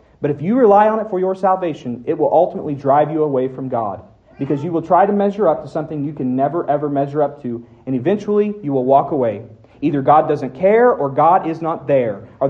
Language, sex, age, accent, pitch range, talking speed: English, male, 40-59, American, 140-190 Hz, 235 wpm